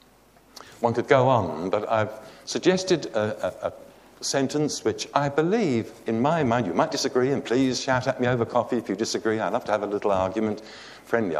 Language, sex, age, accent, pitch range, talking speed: English, male, 60-79, British, 110-155 Hz, 200 wpm